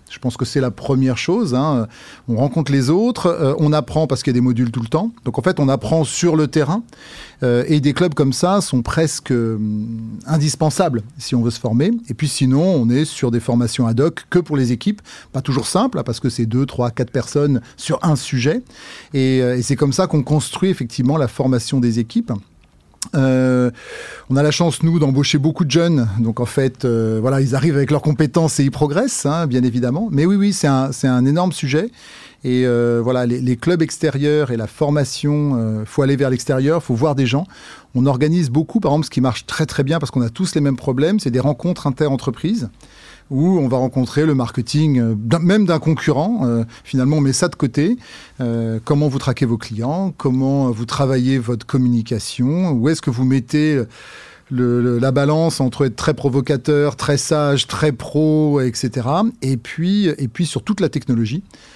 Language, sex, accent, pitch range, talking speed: French, male, French, 125-155 Hz, 210 wpm